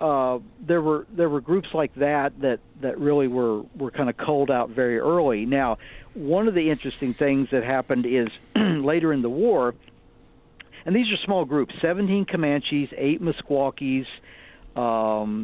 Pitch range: 120-155 Hz